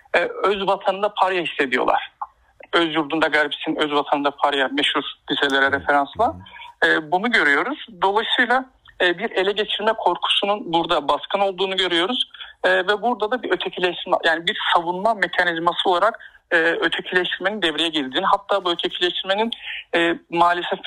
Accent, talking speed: native, 120 wpm